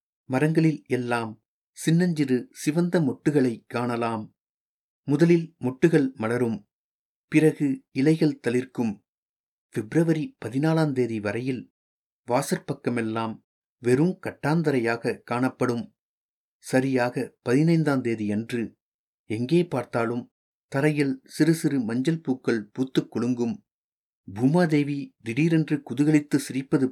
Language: Tamil